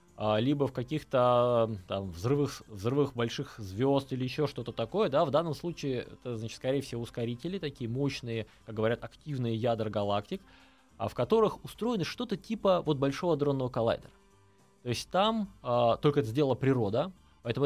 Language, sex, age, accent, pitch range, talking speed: Russian, male, 20-39, native, 115-150 Hz, 145 wpm